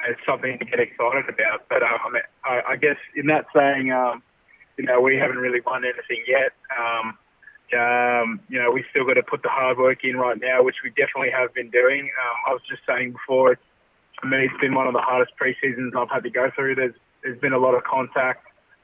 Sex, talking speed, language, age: male, 225 wpm, English, 20-39